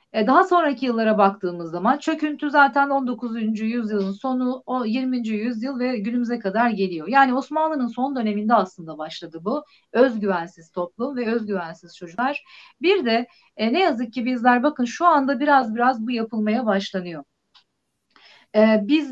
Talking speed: 140 wpm